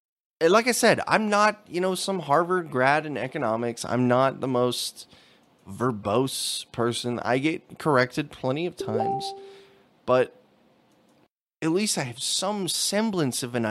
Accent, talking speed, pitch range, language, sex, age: American, 145 wpm, 120-205 Hz, English, male, 20-39